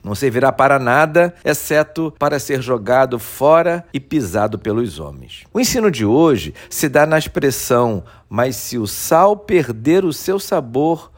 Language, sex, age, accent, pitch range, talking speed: Portuguese, male, 50-69, Brazilian, 130-190 Hz, 155 wpm